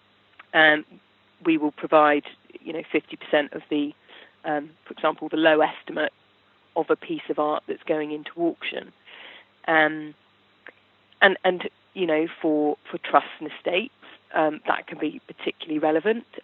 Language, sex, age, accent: English, female, 40-59, British